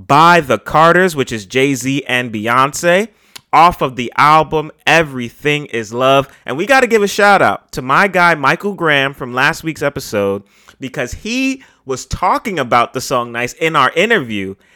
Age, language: 30-49, English